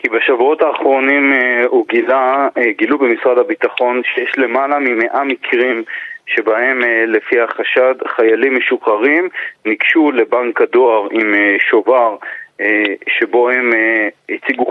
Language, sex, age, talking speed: Hebrew, male, 30-49, 100 wpm